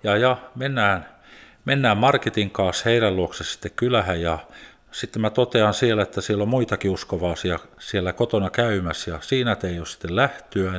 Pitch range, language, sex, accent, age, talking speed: 95-120 Hz, Finnish, male, native, 50-69, 165 wpm